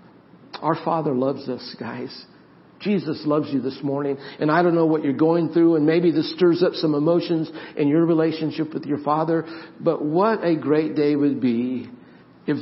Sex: male